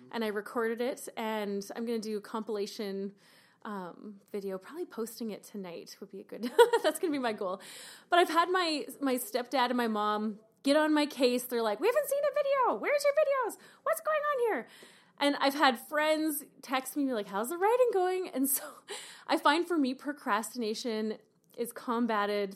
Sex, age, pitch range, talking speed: female, 20-39, 205-275 Hz, 200 wpm